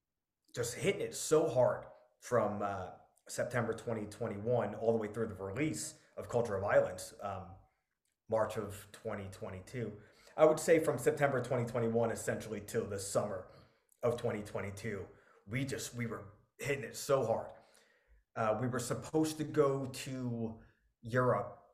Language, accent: English, American